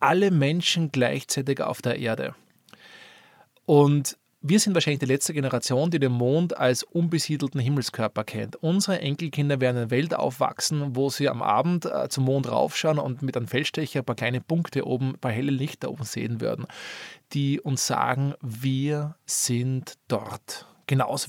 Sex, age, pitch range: male, 20-39, 125-150 Hz